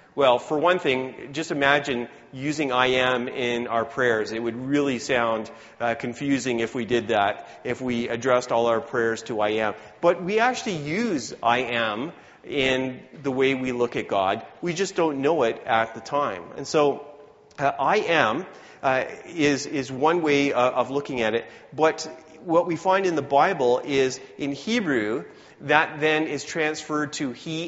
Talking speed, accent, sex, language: 180 wpm, American, male, English